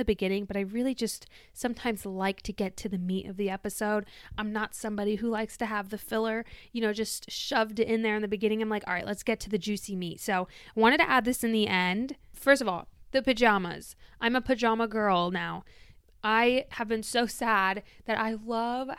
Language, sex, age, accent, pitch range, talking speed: English, female, 20-39, American, 210-245 Hz, 220 wpm